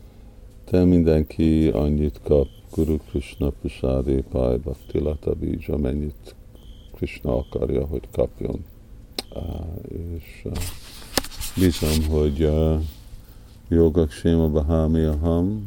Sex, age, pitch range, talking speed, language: male, 50-69, 80-105 Hz, 75 wpm, Hungarian